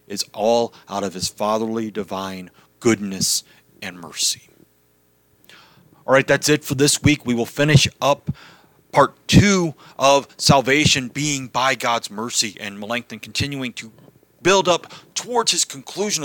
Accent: American